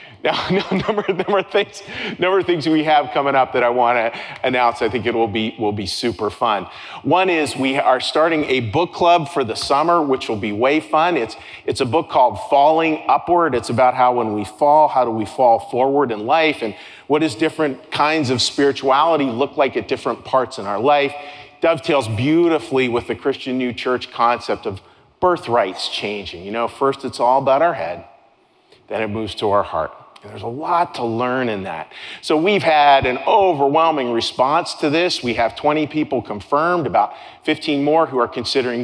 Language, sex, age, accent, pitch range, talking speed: English, male, 40-59, American, 120-160 Hz, 195 wpm